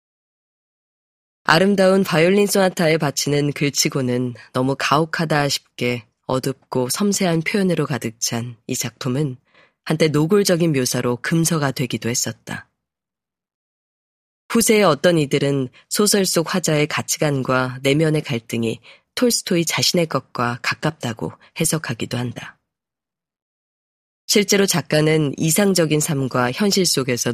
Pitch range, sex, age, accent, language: 130-170 Hz, female, 20-39, native, Korean